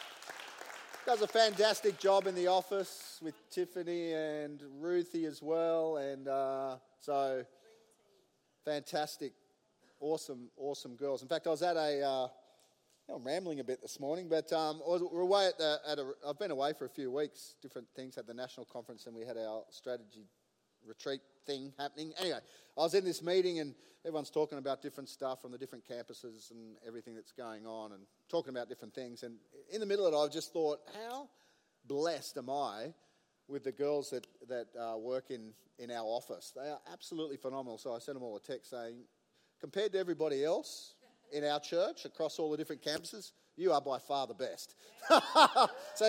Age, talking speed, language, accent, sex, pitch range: 30-49, 185 wpm, English, Australian, male, 130-175 Hz